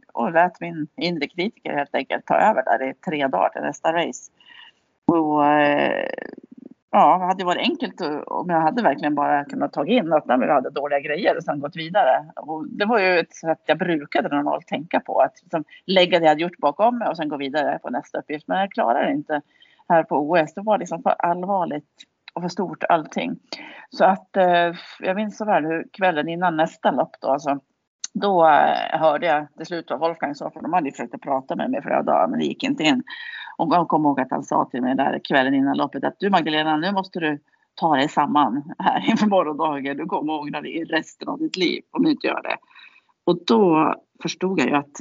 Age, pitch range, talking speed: 30-49, 150-200 Hz, 220 wpm